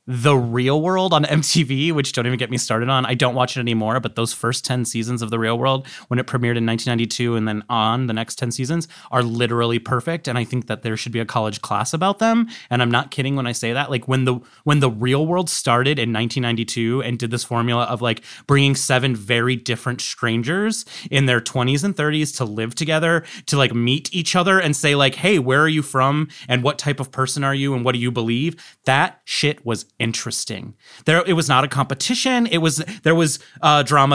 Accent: American